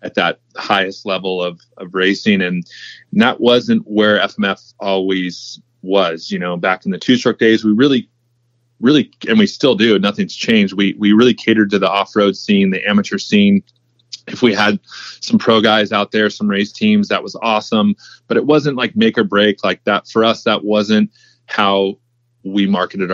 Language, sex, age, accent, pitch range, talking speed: English, male, 30-49, American, 95-120 Hz, 190 wpm